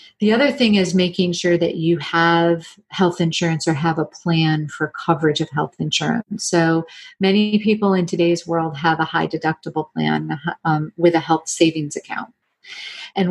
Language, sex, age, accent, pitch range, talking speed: English, female, 40-59, American, 165-190 Hz, 170 wpm